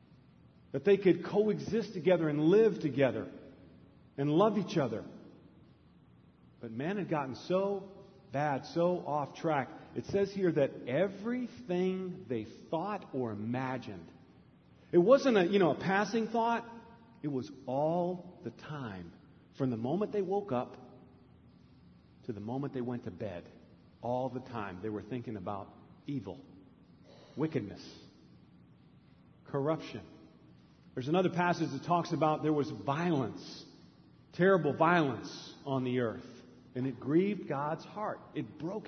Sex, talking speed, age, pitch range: male, 130 wpm, 50-69, 125-185 Hz